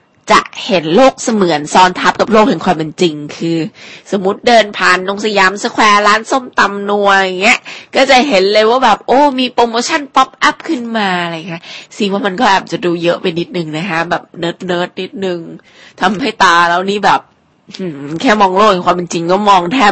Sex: female